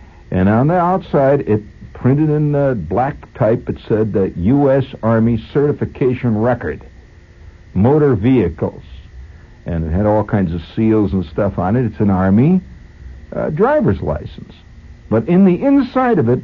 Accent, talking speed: American, 155 wpm